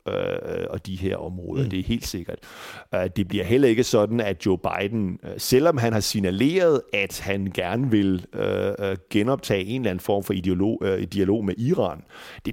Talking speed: 165 wpm